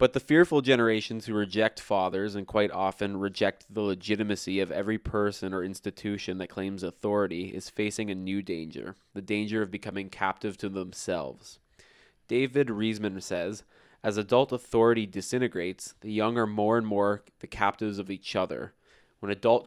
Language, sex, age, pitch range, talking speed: English, male, 20-39, 95-110 Hz, 160 wpm